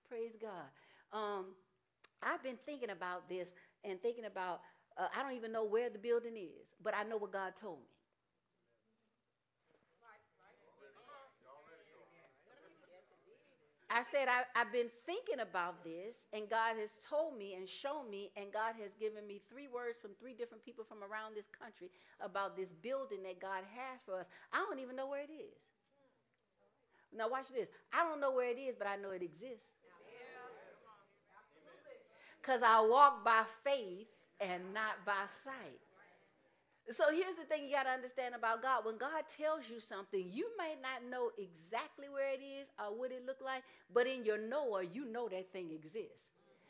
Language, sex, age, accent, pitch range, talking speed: English, female, 40-59, American, 205-275 Hz, 170 wpm